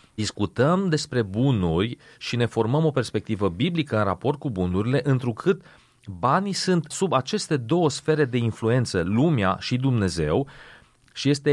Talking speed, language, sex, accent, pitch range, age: 140 wpm, Romanian, male, native, 110-145 Hz, 30-49